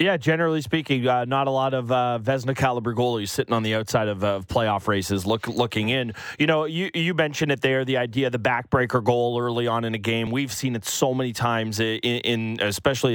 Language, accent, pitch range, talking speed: English, American, 115-145 Hz, 230 wpm